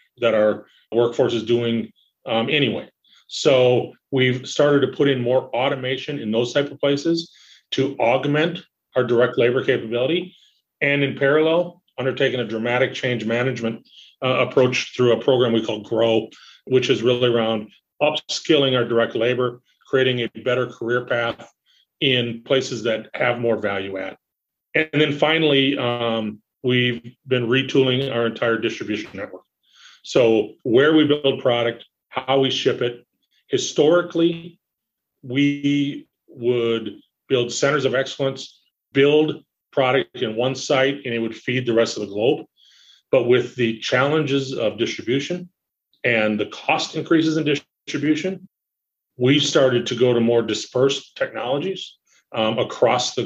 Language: English